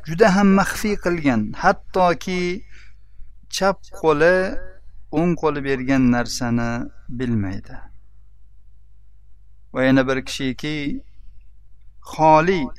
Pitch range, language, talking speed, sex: 100-160 Hz, Russian, 55 wpm, male